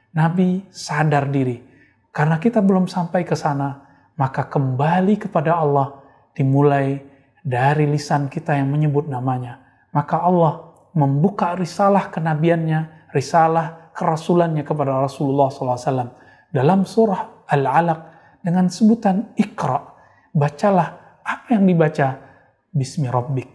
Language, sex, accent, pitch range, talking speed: Indonesian, male, native, 140-175 Hz, 105 wpm